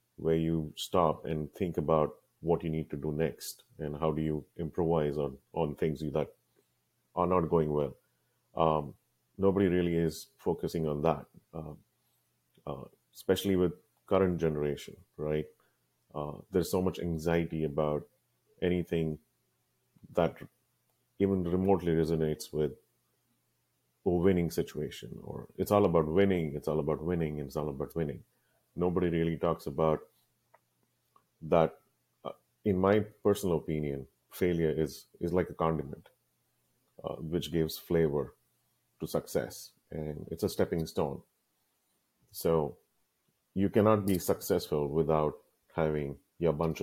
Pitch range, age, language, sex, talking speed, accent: 75-90 Hz, 30-49, English, male, 130 wpm, Indian